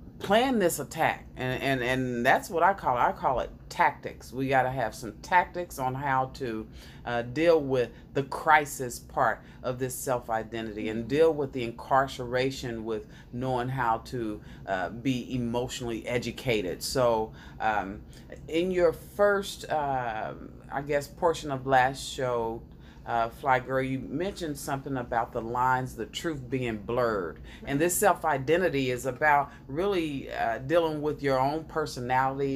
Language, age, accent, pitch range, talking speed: English, 40-59, American, 120-145 Hz, 155 wpm